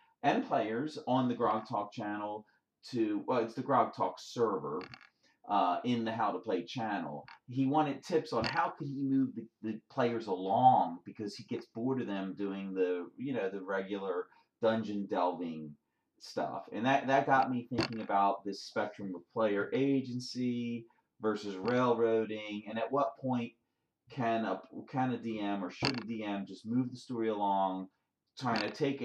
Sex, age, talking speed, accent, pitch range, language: male, 40-59, 170 wpm, American, 100-130 Hz, English